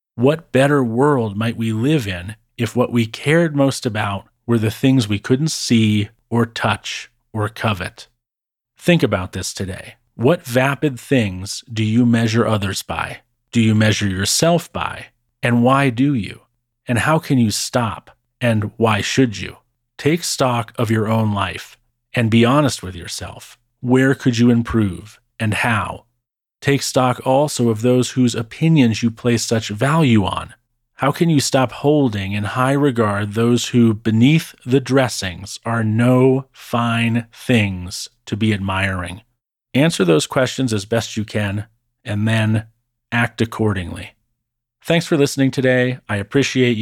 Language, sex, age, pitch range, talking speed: English, male, 40-59, 110-130 Hz, 155 wpm